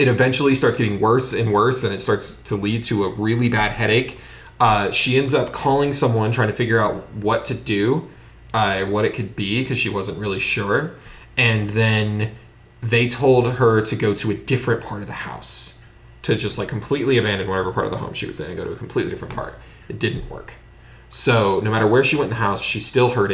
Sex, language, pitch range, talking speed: male, English, 105-125 Hz, 230 wpm